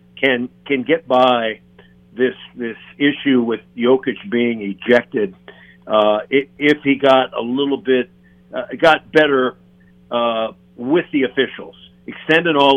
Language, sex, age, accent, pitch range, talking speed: English, male, 50-69, American, 105-130 Hz, 130 wpm